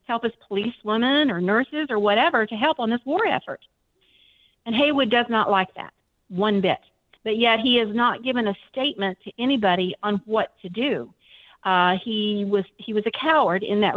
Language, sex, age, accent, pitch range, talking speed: English, female, 50-69, American, 185-230 Hz, 195 wpm